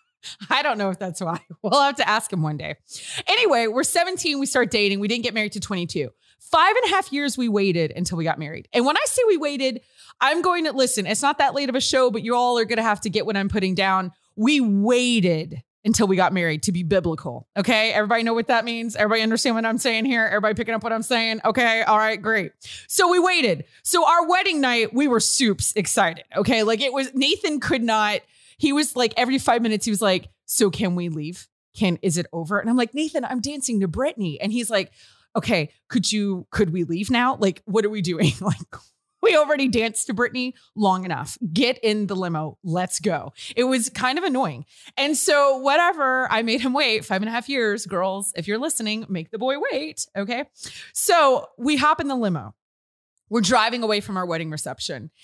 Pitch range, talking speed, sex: 195-265 Hz, 225 wpm, female